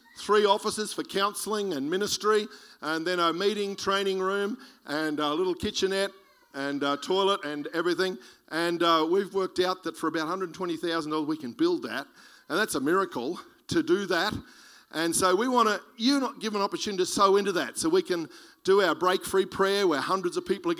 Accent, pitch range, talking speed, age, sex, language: Australian, 165-205 Hz, 195 wpm, 50-69, male, English